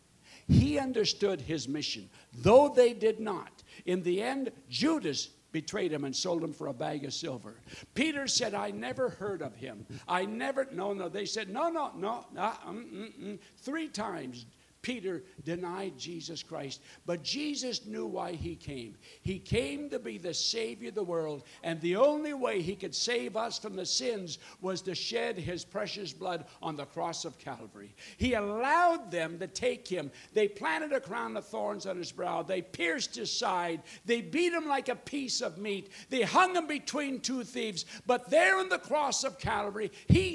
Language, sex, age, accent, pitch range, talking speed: English, male, 60-79, American, 175-255 Hz, 185 wpm